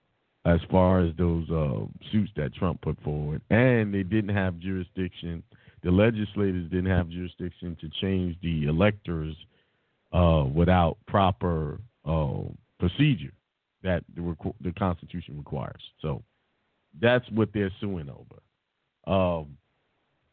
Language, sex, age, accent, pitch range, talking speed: English, male, 50-69, American, 85-110 Hz, 120 wpm